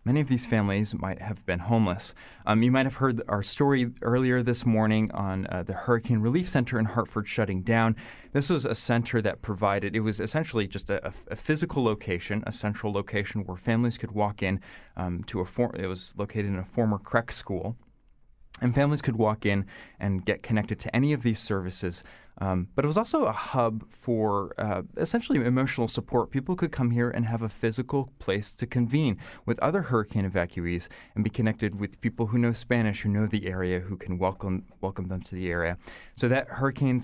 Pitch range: 100-120 Hz